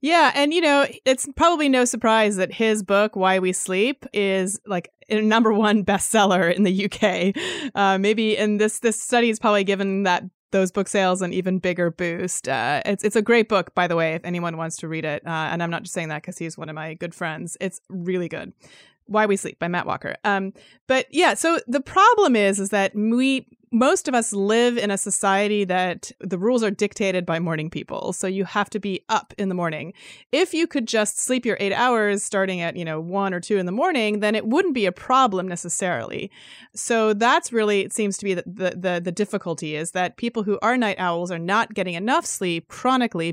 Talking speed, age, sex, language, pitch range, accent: 225 wpm, 30-49, female, English, 180-225 Hz, American